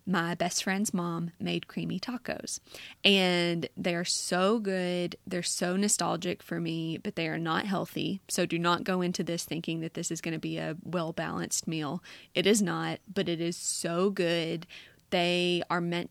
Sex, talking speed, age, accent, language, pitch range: female, 185 wpm, 20-39, American, English, 165-200 Hz